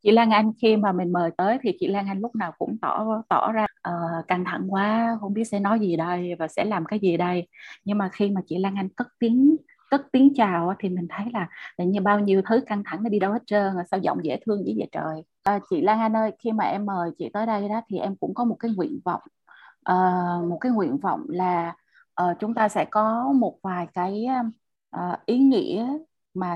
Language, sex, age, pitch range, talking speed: Vietnamese, female, 20-39, 185-230 Hz, 245 wpm